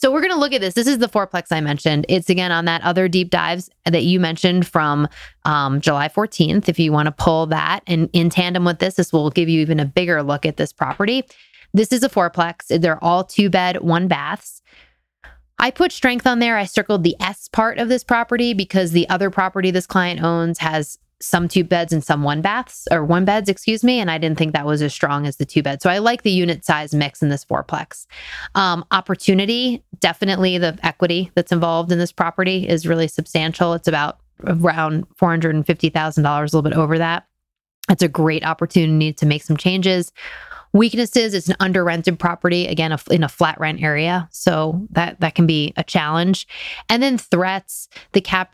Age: 20-39